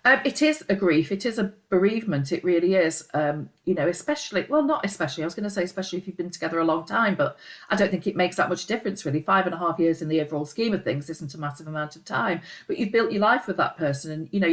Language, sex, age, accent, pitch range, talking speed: English, female, 40-59, British, 170-225 Hz, 290 wpm